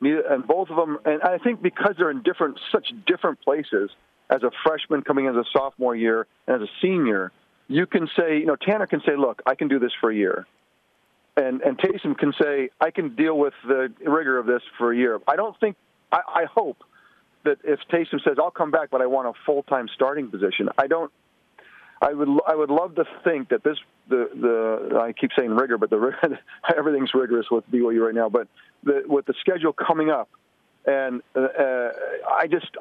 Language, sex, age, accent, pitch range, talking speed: English, male, 40-59, American, 125-165 Hz, 210 wpm